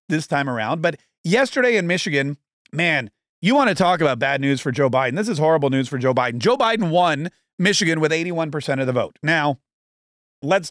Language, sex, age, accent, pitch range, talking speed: English, male, 40-59, American, 135-185 Hz, 200 wpm